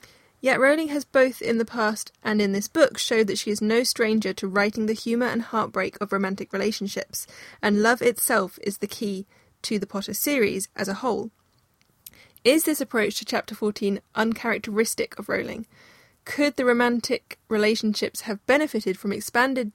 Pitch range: 205-240 Hz